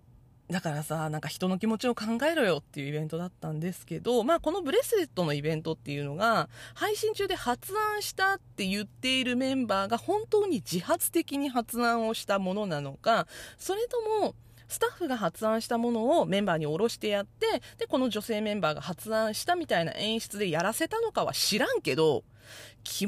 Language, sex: Japanese, female